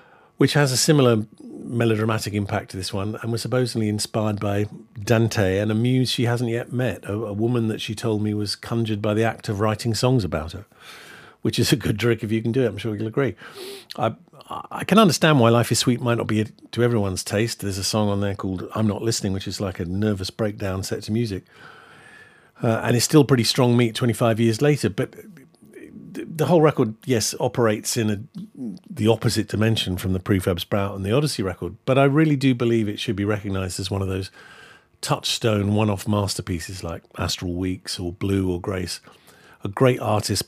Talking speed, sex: 205 wpm, male